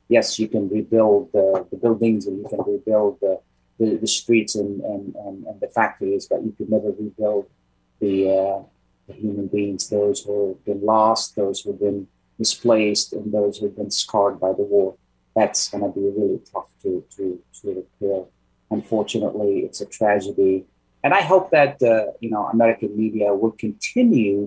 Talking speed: 185 wpm